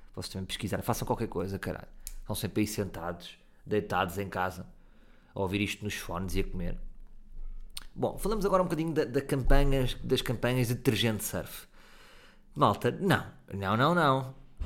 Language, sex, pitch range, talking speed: Portuguese, male, 105-170 Hz, 150 wpm